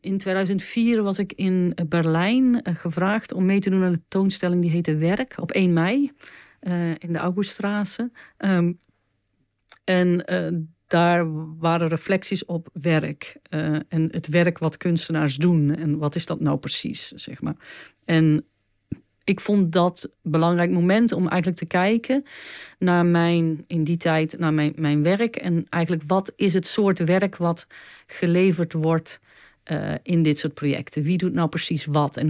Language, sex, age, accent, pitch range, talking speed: Dutch, female, 40-59, Dutch, 155-180 Hz, 165 wpm